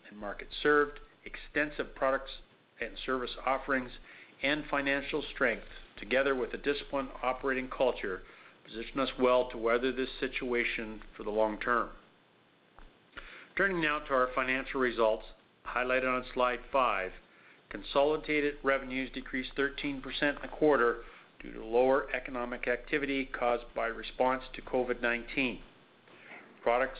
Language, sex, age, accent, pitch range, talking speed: English, male, 50-69, American, 125-140 Hz, 120 wpm